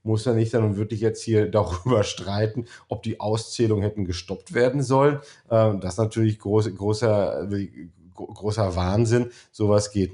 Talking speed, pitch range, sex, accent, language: 150 wpm, 100-115 Hz, male, German, German